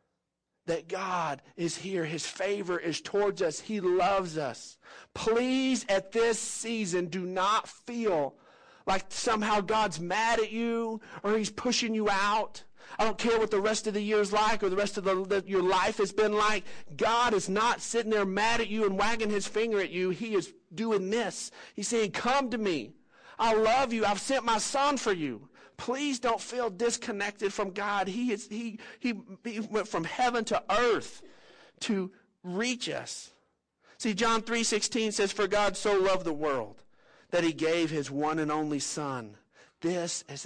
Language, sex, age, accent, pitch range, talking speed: English, male, 50-69, American, 170-225 Hz, 180 wpm